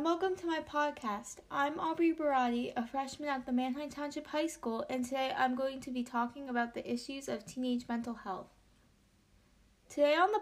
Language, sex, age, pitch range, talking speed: English, female, 20-39, 230-275 Hz, 185 wpm